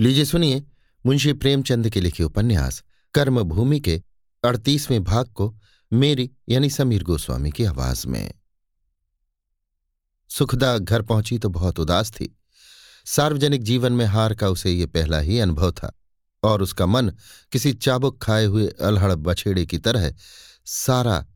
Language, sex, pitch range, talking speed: Hindi, male, 90-125 Hz, 140 wpm